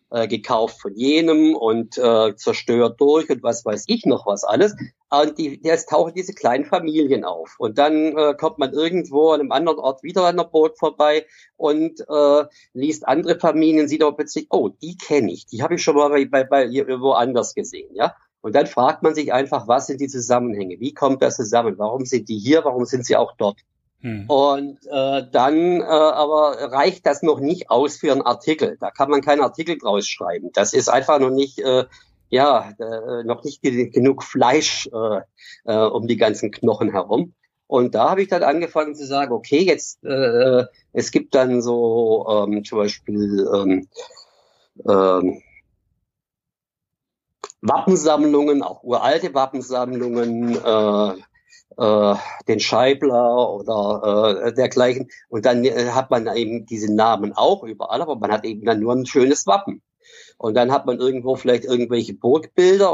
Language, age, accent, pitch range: German, 50-69, German, 120-155 Hz